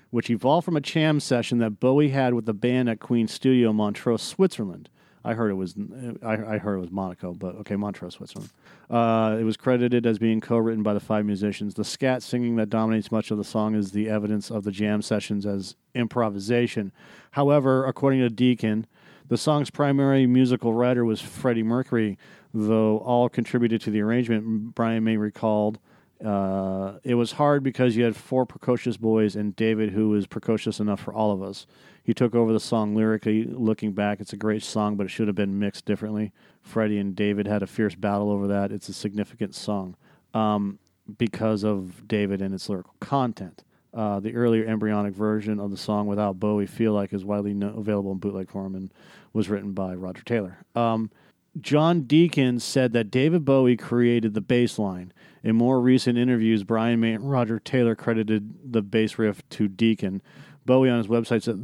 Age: 40-59